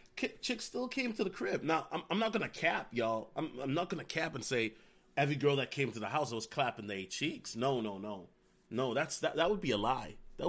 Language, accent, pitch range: English, American, 130-200 Hz